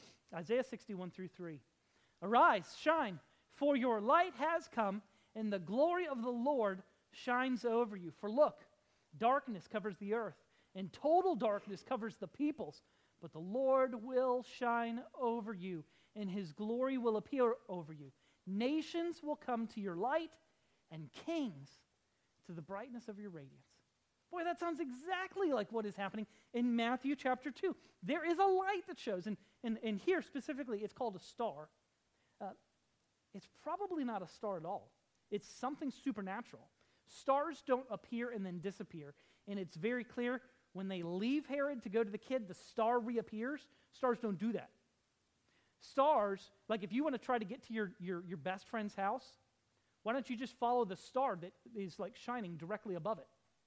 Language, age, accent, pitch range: English, 40-59, American, 195-265 Hz